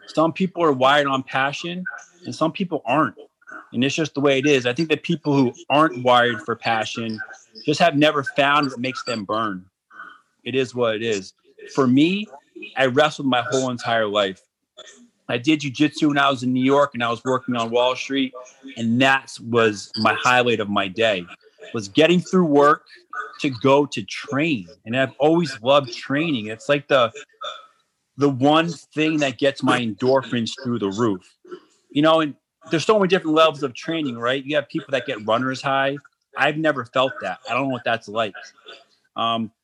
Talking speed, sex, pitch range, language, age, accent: 190 wpm, male, 125-155 Hz, English, 30-49, American